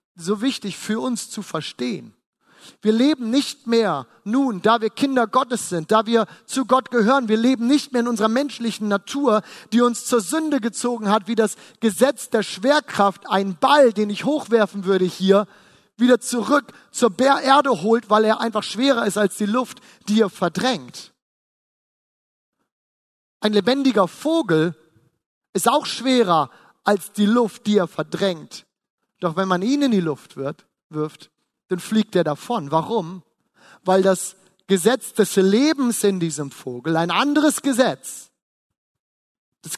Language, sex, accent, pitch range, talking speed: German, male, German, 190-255 Hz, 150 wpm